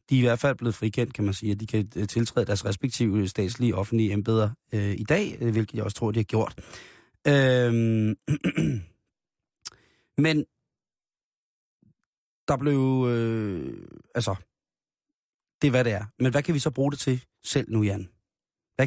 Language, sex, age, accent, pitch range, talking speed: Danish, male, 30-49, native, 110-135 Hz, 160 wpm